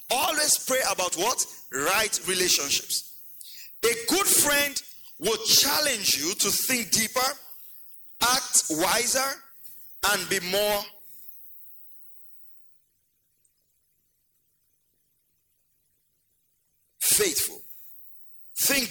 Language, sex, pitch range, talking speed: English, male, 190-275 Hz, 70 wpm